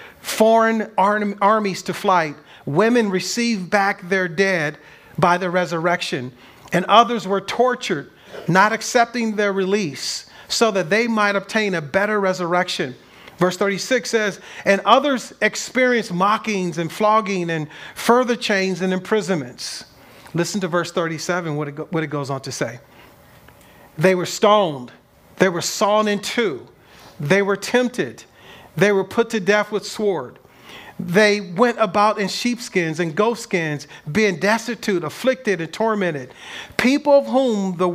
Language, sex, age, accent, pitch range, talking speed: English, male, 40-59, American, 175-220 Hz, 140 wpm